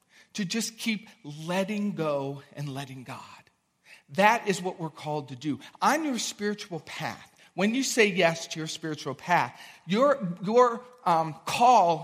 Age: 40-59